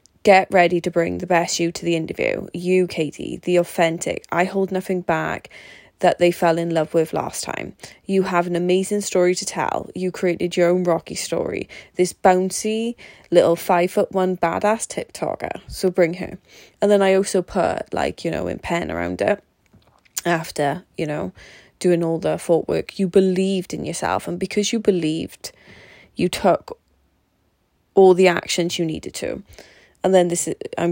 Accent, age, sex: British, 20-39, female